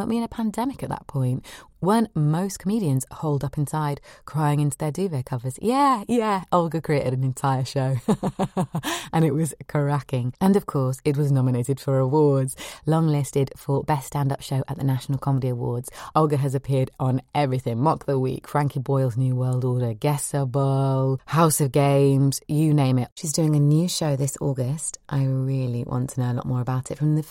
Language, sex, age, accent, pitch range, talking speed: English, female, 20-39, British, 130-155 Hz, 190 wpm